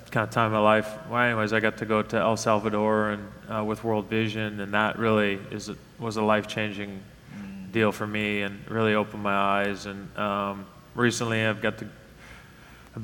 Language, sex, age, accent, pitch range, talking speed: English, male, 20-39, American, 105-120 Hz, 200 wpm